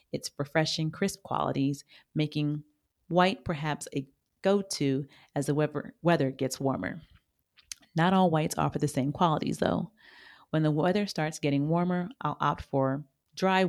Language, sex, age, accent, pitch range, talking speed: English, female, 40-59, American, 140-170 Hz, 145 wpm